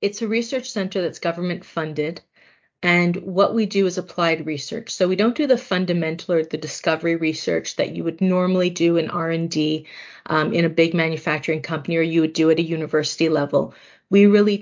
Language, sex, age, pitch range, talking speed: English, female, 30-49, 160-175 Hz, 190 wpm